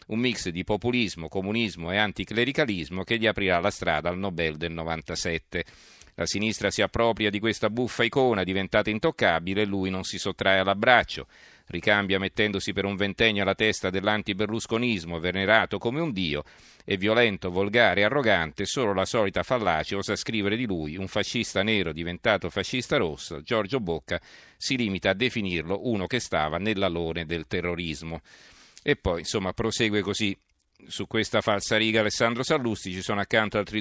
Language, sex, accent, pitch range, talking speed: Italian, male, native, 95-115 Hz, 160 wpm